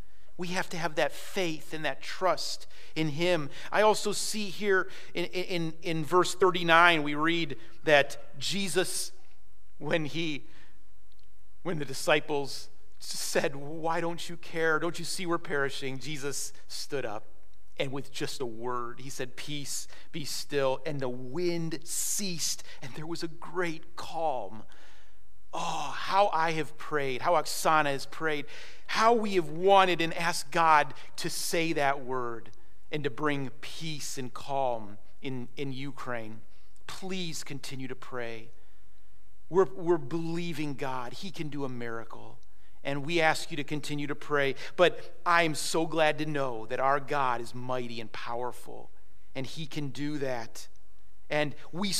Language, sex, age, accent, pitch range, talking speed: English, male, 40-59, American, 130-175 Hz, 155 wpm